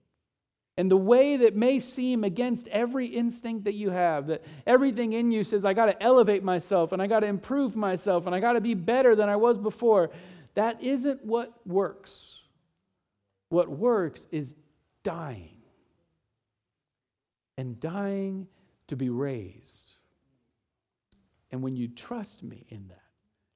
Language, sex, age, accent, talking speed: English, male, 50-69, American, 150 wpm